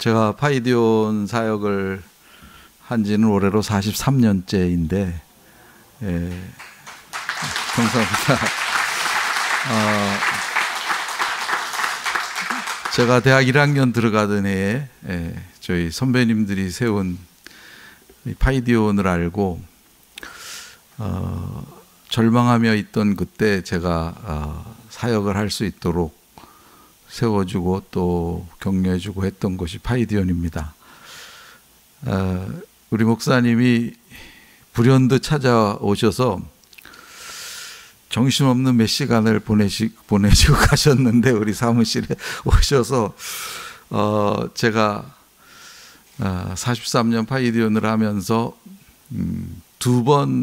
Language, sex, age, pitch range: Korean, male, 50-69, 95-120 Hz